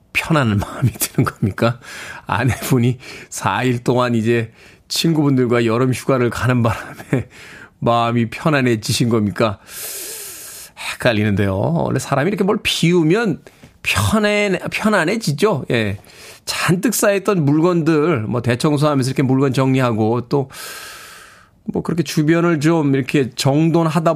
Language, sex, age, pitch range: Korean, male, 20-39, 125-180 Hz